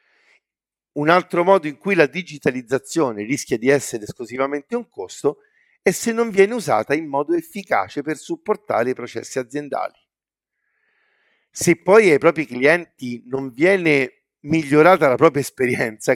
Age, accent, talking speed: 50-69, native, 135 wpm